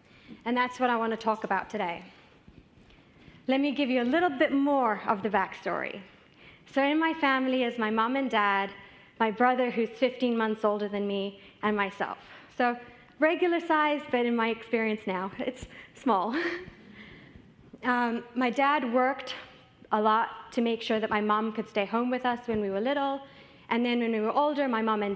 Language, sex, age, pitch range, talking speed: English, female, 30-49, 215-255 Hz, 190 wpm